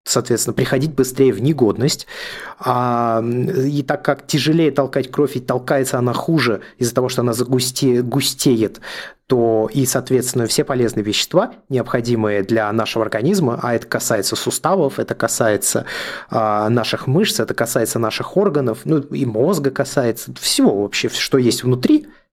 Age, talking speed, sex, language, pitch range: 20-39, 135 wpm, male, Russian, 115-140 Hz